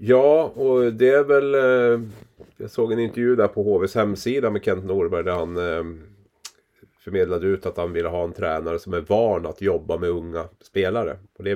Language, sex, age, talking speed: English, male, 30-49, 185 wpm